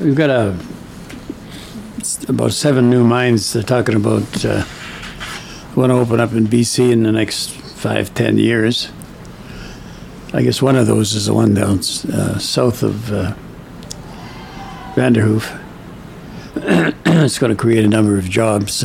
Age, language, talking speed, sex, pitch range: 60-79, English, 140 wpm, male, 105-120 Hz